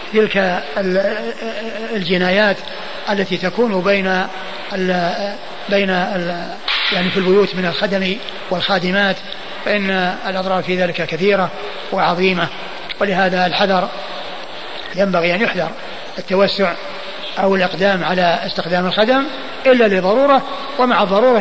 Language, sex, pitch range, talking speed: Arabic, male, 190-230 Hz, 100 wpm